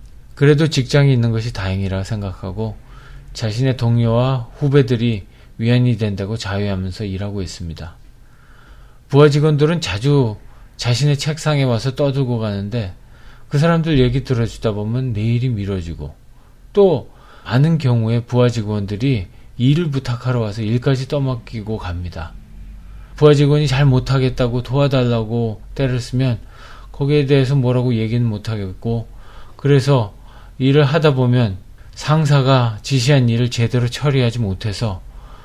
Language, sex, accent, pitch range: Korean, male, native, 110-135 Hz